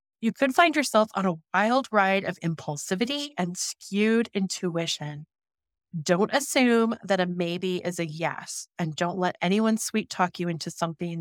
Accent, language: American, English